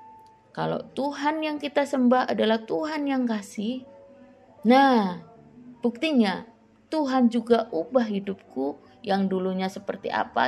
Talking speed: 110 wpm